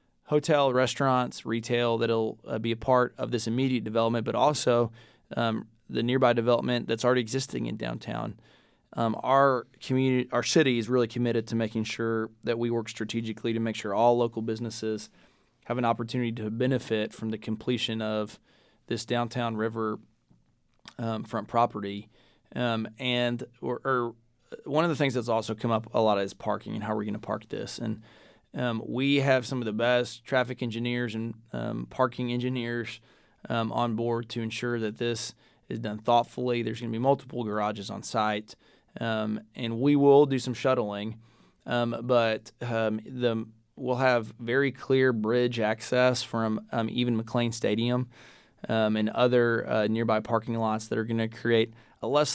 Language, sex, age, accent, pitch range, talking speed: English, male, 20-39, American, 110-125 Hz, 170 wpm